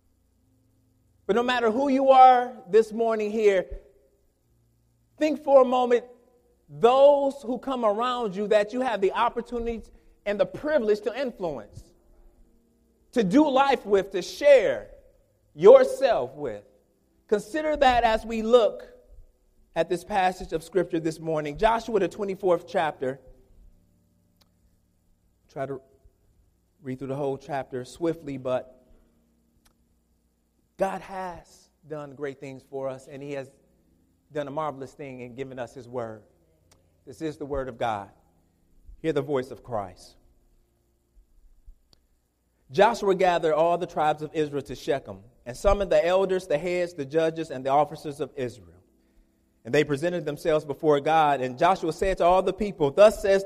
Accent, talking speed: American, 145 wpm